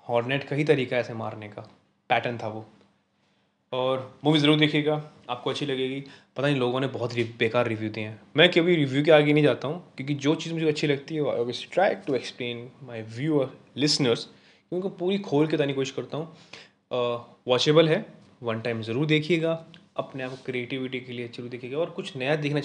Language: Hindi